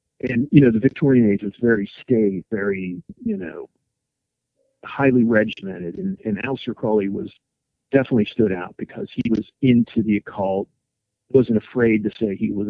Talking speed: 160 wpm